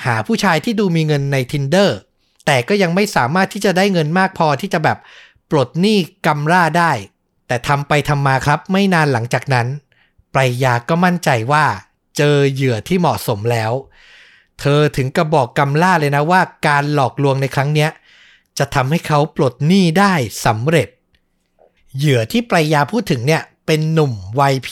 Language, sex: Thai, male